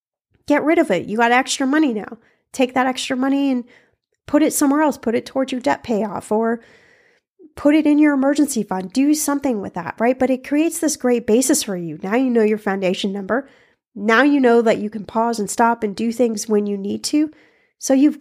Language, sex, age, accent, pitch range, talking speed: English, female, 30-49, American, 215-285 Hz, 225 wpm